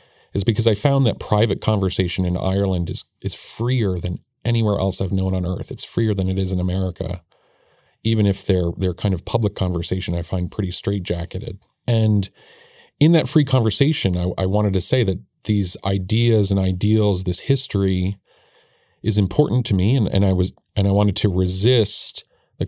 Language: English